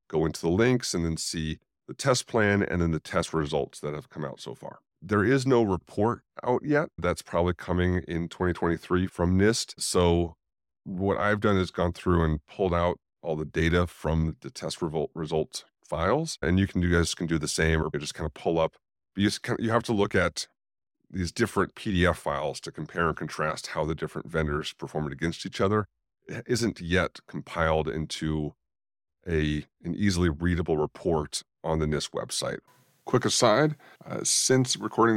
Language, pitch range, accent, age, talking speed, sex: English, 80-105 Hz, American, 30-49, 190 wpm, male